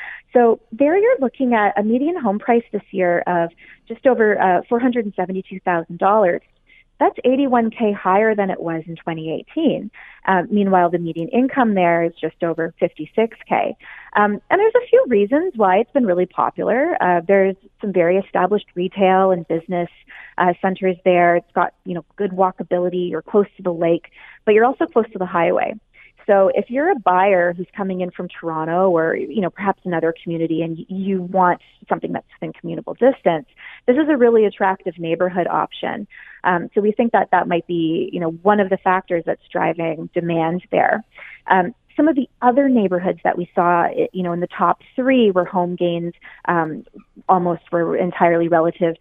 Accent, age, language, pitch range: American, 30-49, English, 175-215 Hz